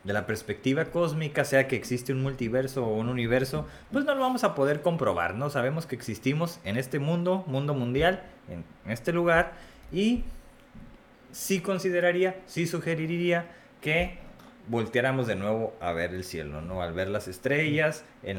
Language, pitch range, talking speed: Spanish, 115-165 Hz, 165 wpm